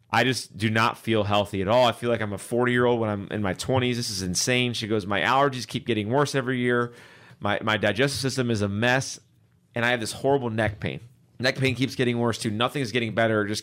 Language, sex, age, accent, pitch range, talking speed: English, male, 30-49, American, 110-130 Hz, 250 wpm